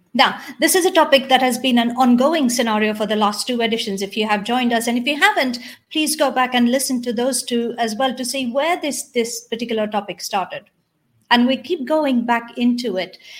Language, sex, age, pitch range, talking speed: English, female, 50-69, 215-265 Hz, 225 wpm